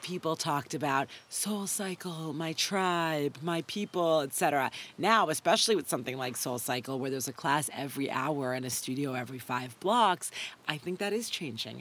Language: English